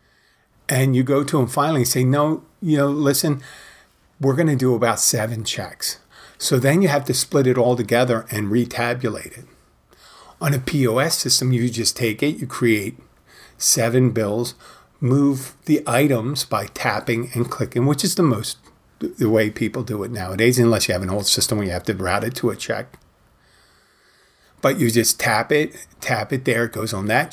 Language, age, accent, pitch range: English, 40-59, American, 115-140 Hz